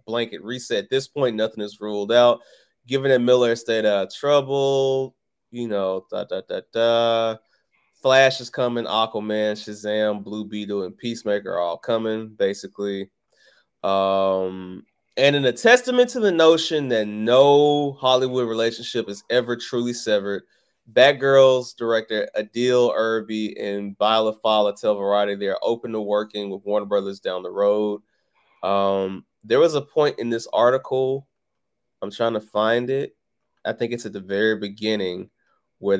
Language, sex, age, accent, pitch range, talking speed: English, male, 20-39, American, 100-125 Hz, 150 wpm